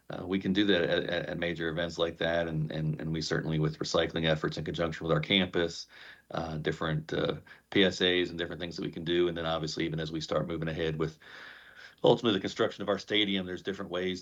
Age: 40-59